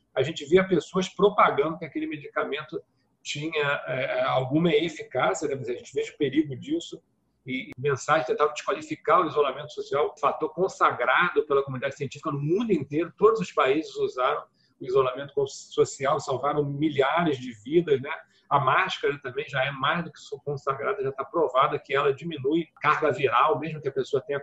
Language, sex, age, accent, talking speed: Portuguese, male, 40-59, Brazilian, 175 wpm